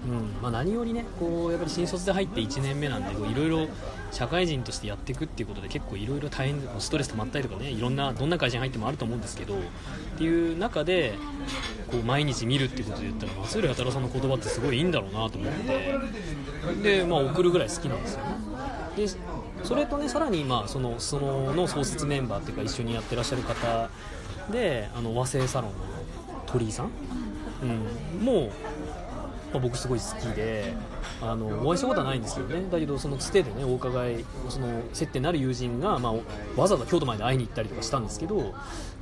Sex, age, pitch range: male, 20-39, 110-155 Hz